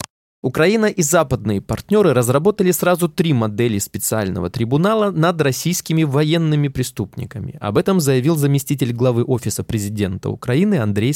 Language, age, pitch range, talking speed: Russian, 20-39, 110-160 Hz, 125 wpm